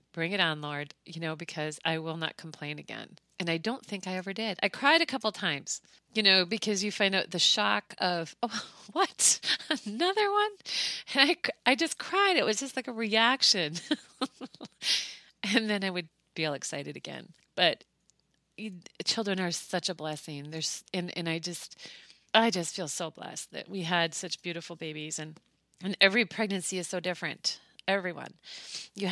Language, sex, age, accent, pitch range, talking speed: English, female, 30-49, American, 165-200 Hz, 180 wpm